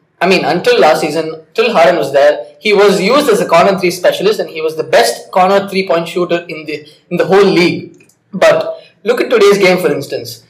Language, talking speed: English, 215 wpm